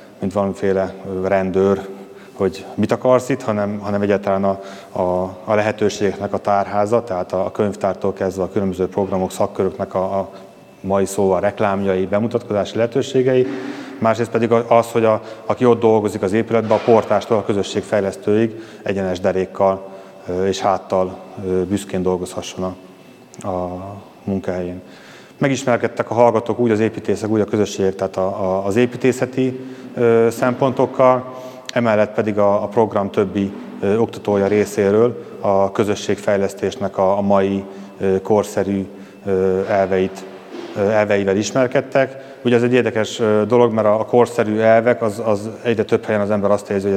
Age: 30-49